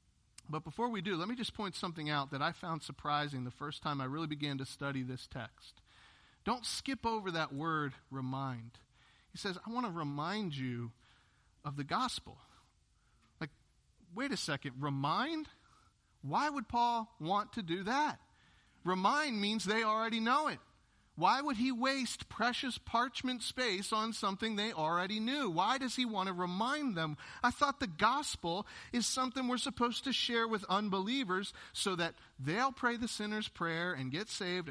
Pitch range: 160-230 Hz